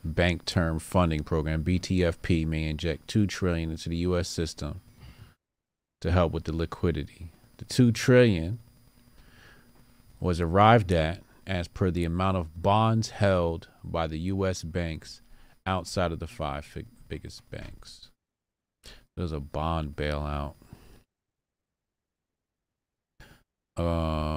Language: English